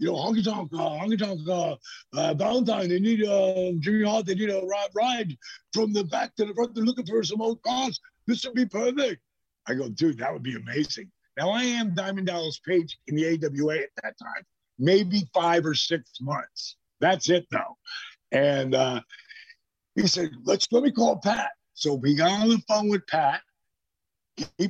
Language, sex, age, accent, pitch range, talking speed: English, male, 50-69, American, 155-220 Hz, 195 wpm